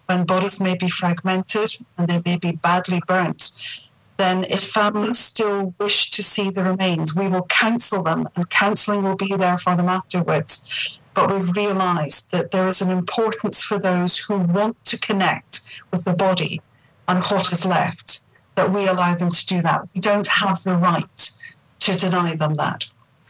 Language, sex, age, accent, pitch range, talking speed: English, female, 40-59, British, 180-210 Hz, 180 wpm